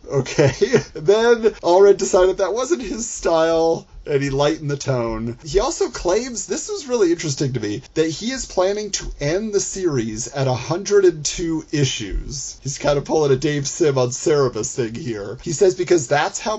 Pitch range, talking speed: 125-175 Hz, 175 wpm